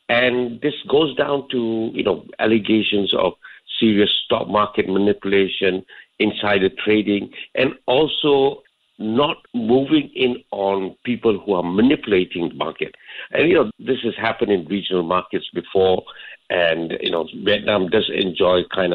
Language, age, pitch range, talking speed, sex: English, 60-79, 95-115 Hz, 140 wpm, male